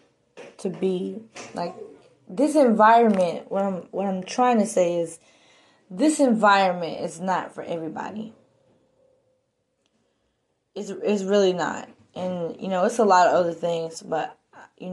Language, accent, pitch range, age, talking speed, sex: English, American, 170-205 Hz, 20-39, 135 wpm, female